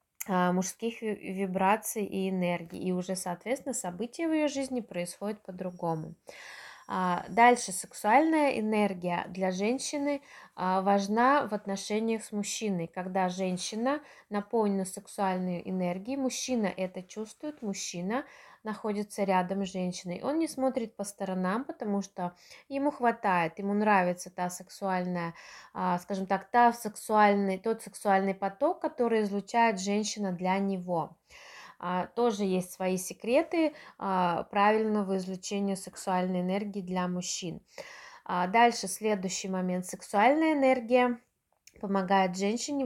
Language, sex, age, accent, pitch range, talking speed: Russian, female, 20-39, native, 185-235 Hz, 110 wpm